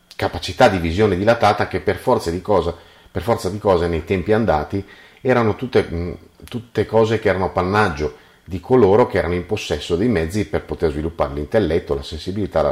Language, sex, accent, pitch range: Italian, male, native, 75-100 Hz